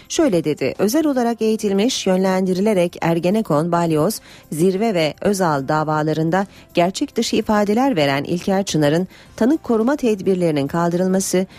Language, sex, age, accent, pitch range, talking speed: Turkish, female, 40-59, native, 155-220 Hz, 115 wpm